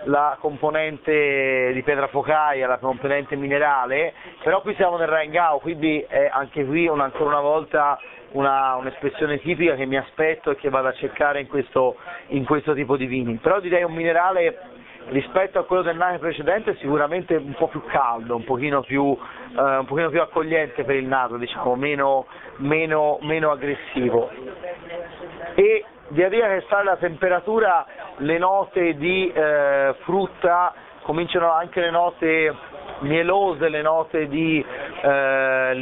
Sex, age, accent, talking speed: male, 30-49, native, 155 wpm